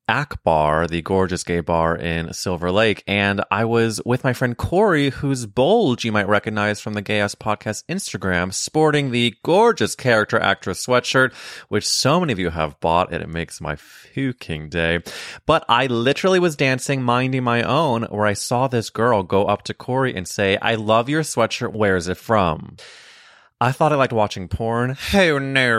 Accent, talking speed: American, 185 wpm